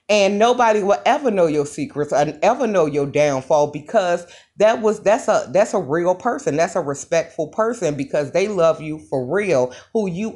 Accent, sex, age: American, female, 30-49